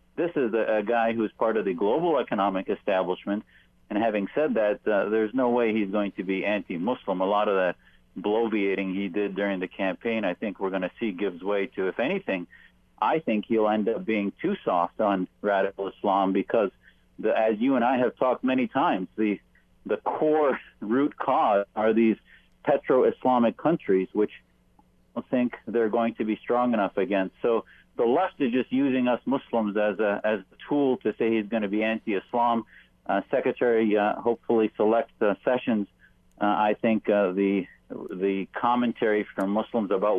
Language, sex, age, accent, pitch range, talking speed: English, male, 50-69, American, 100-115 Hz, 185 wpm